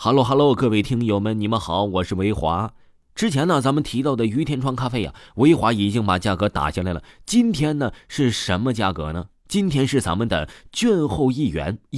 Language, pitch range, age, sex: Chinese, 100-150 Hz, 30-49, male